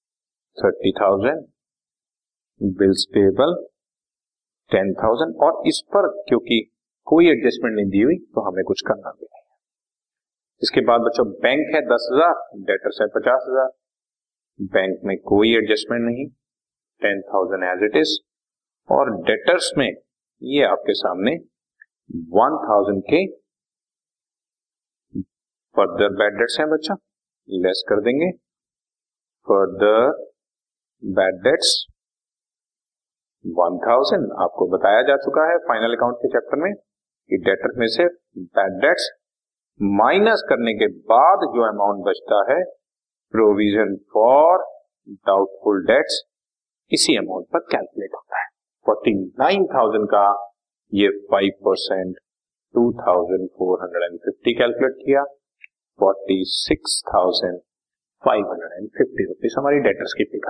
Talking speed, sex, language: 110 wpm, male, Hindi